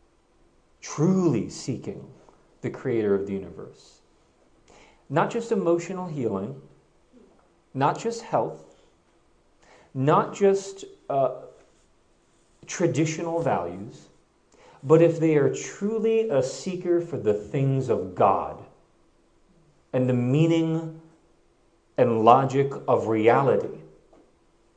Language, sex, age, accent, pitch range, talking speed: English, male, 40-59, American, 125-175 Hz, 90 wpm